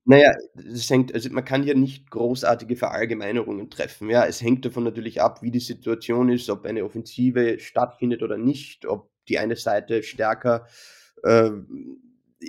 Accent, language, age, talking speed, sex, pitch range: German, German, 20-39, 155 wpm, male, 115-125 Hz